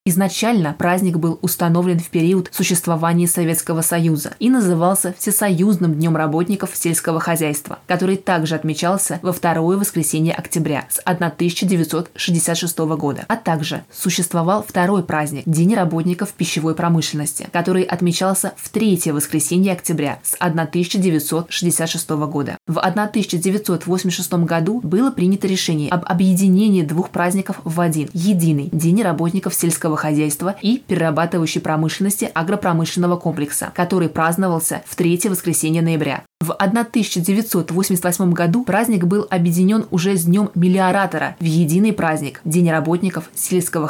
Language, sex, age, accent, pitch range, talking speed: Russian, female, 20-39, native, 165-190 Hz, 120 wpm